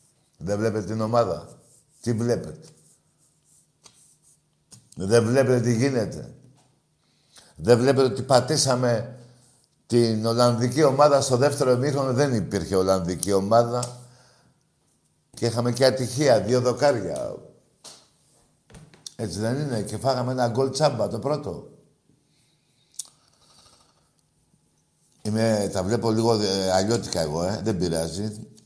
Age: 60-79